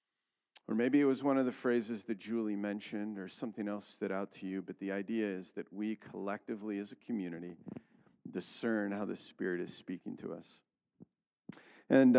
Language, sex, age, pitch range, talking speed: English, male, 40-59, 100-120 Hz, 180 wpm